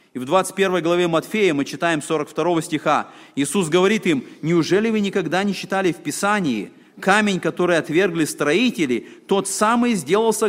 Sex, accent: male, native